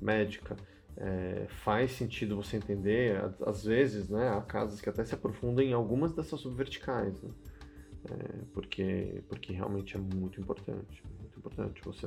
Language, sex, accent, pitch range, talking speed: Portuguese, male, Brazilian, 95-115 Hz, 150 wpm